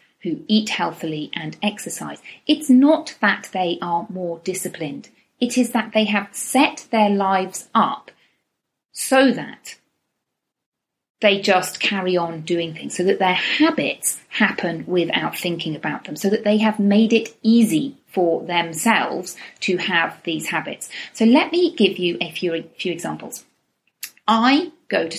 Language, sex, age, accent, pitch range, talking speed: English, female, 40-59, British, 175-240 Hz, 150 wpm